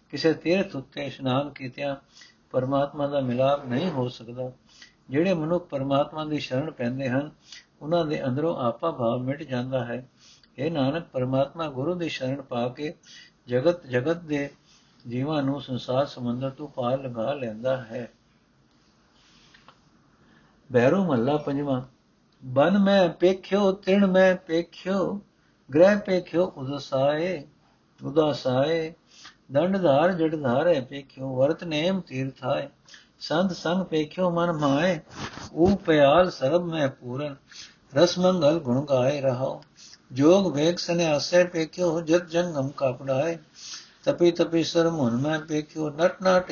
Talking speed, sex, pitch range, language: 130 wpm, male, 135-175 Hz, Punjabi